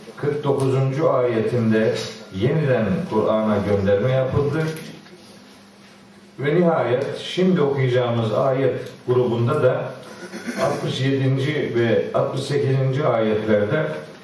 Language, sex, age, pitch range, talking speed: Turkish, male, 40-59, 110-150 Hz, 70 wpm